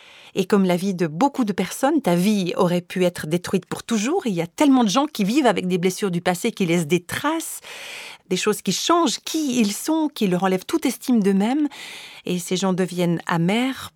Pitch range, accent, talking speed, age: 175-235 Hz, French, 220 wpm, 40-59